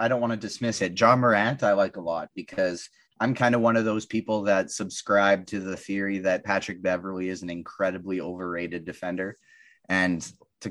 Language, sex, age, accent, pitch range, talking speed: English, male, 20-39, American, 95-120 Hz, 195 wpm